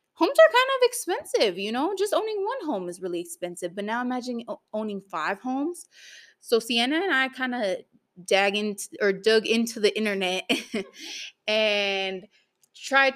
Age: 20-39